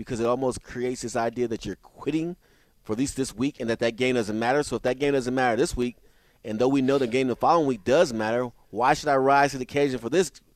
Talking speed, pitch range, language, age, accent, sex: 275 wpm, 125-170 Hz, English, 30-49, American, male